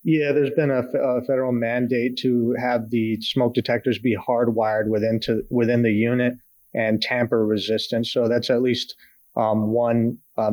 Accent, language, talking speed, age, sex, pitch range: American, English, 165 wpm, 30-49, male, 110-125 Hz